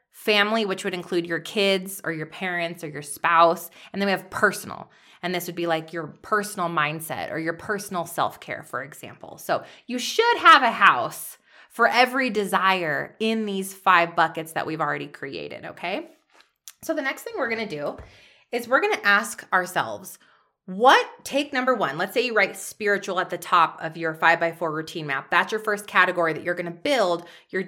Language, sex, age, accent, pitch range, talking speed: English, female, 20-39, American, 175-245 Hz, 200 wpm